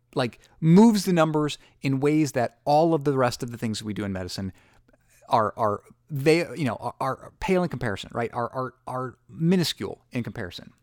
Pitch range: 110-145 Hz